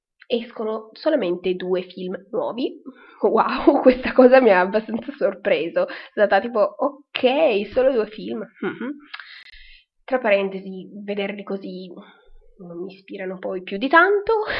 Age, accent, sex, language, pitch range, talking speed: 20-39, native, female, Italian, 200-265 Hz, 125 wpm